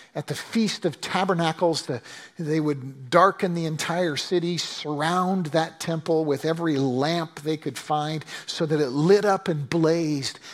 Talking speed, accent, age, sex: 155 wpm, American, 50-69, male